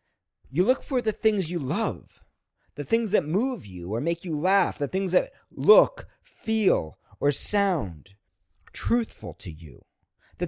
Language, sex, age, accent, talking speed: English, male, 40-59, American, 155 wpm